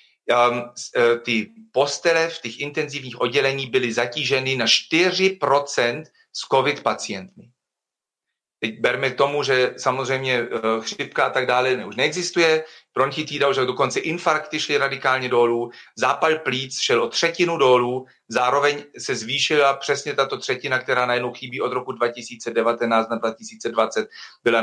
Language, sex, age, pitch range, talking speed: Slovak, male, 40-59, 120-150 Hz, 135 wpm